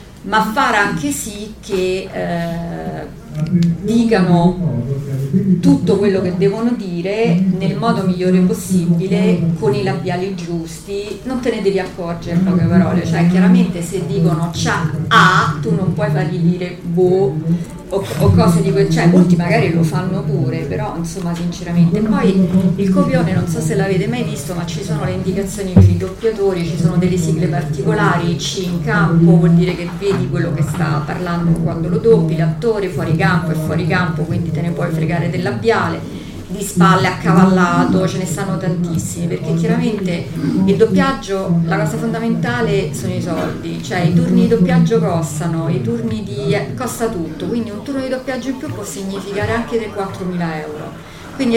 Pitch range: 165-195 Hz